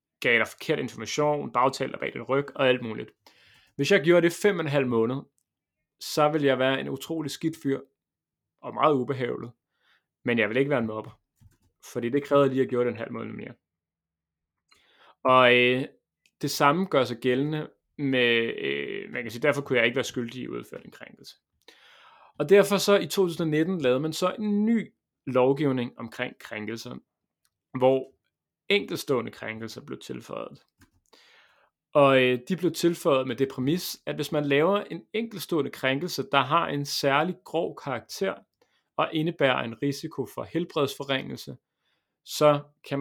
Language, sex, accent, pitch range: Danish, male, native, 120-150 Hz